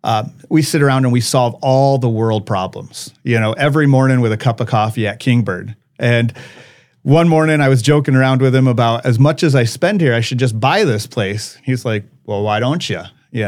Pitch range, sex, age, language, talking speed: 120-145 Hz, male, 40-59, English, 225 wpm